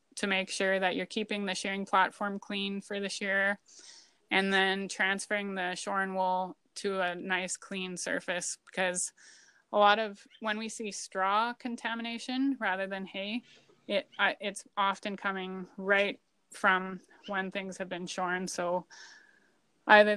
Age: 20-39